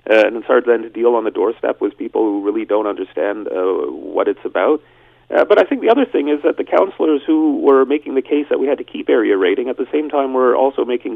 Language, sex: English, male